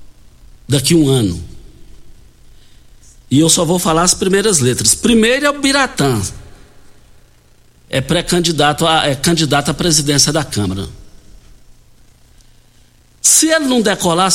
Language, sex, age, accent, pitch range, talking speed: Portuguese, male, 60-79, Brazilian, 120-160 Hz, 115 wpm